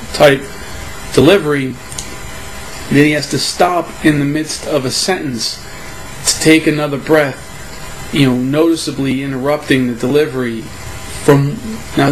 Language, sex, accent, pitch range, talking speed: English, male, American, 115-130 Hz, 130 wpm